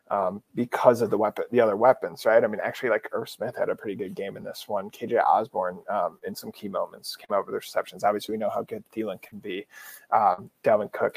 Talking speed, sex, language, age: 245 wpm, male, English, 30-49